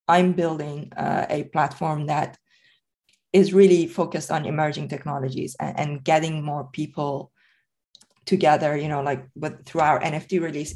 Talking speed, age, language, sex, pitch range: 145 wpm, 20-39, English, female, 150-170 Hz